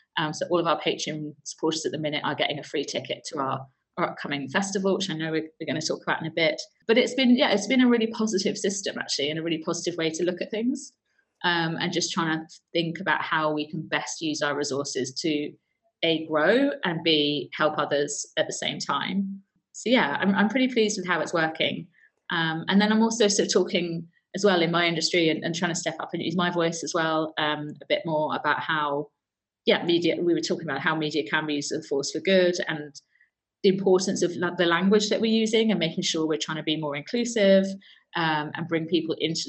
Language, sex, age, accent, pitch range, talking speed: English, female, 30-49, British, 155-195 Hz, 240 wpm